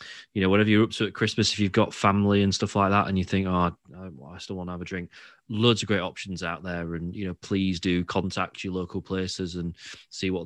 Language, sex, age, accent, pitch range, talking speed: English, male, 30-49, British, 90-110 Hz, 260 wpm